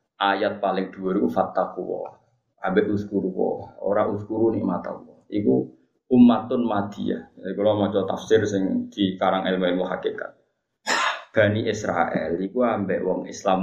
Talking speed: 135 wpm